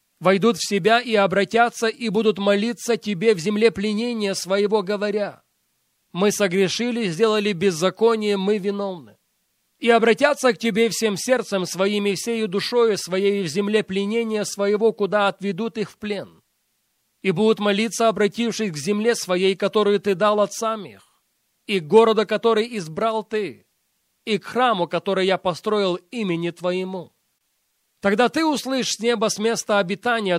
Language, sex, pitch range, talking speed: Russian, male, 190-225 Hz, 145 wpm